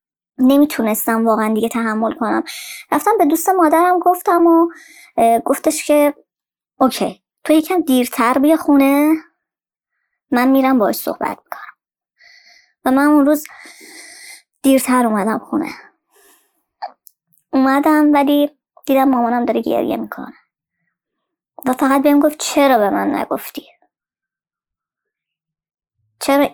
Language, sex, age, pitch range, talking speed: Persian, male, 20-39, 245-300 Hz, 105 wpm